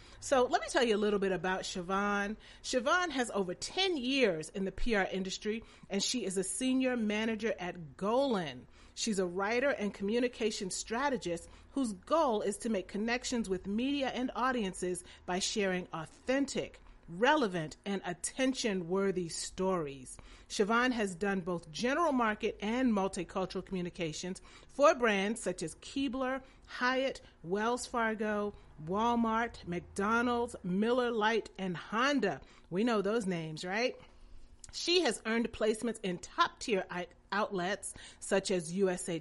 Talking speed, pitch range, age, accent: 135 wpm, 185-245 Hz, 40-59, American